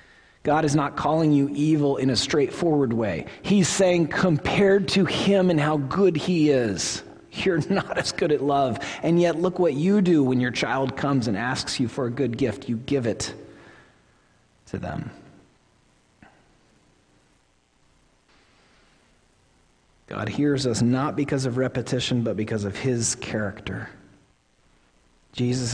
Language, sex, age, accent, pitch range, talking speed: English, male, 40-59, American, 110-145 Hz, 140 wpm